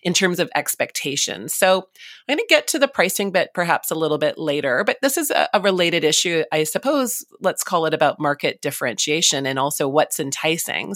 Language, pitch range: English, 140-210 Hz